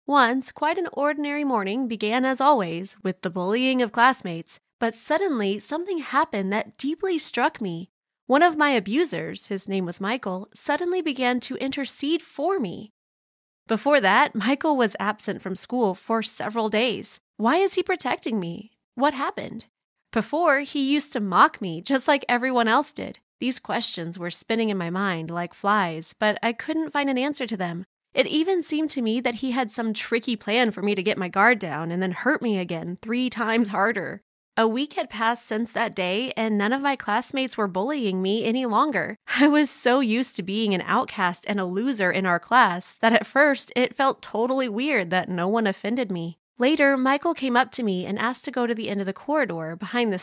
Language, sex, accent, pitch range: English, female, American, 195-270 Hz